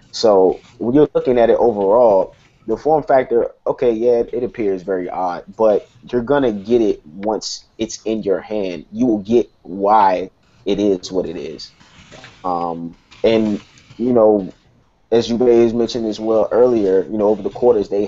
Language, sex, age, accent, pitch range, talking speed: English, male, 20-39, American, 100-120 Hz, 175 wpm